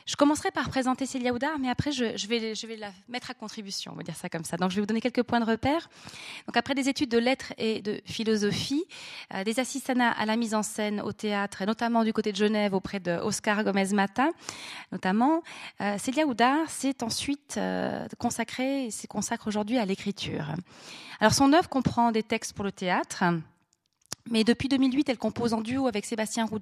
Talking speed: 205 wpm